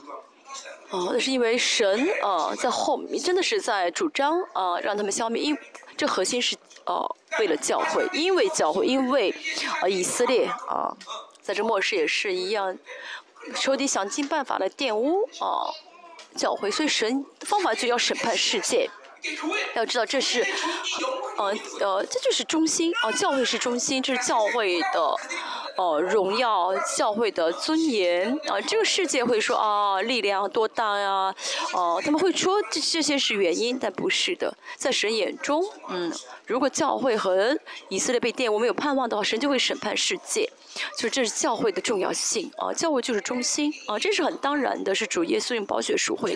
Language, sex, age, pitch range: Chinese, female, 20-39, 245-370 Hz